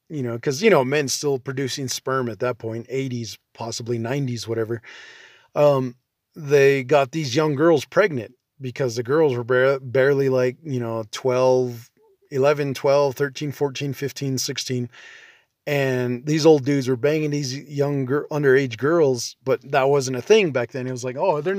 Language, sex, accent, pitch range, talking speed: English, male, American, 125-145 Hz, 170 wpm